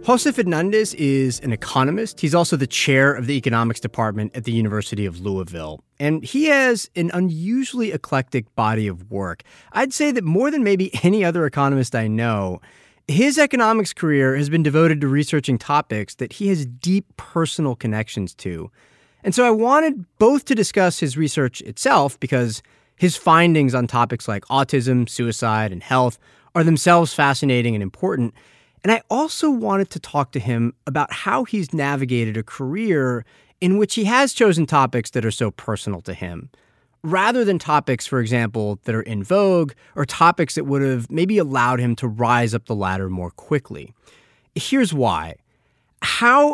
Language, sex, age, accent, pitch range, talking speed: English, male, 30-49, American, 115-180 Hz, 170 wpm